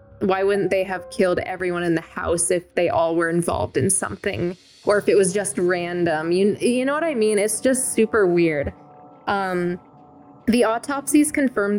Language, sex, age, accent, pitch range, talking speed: English, female, 10-29, American, 180-225 Hz, 185 wpm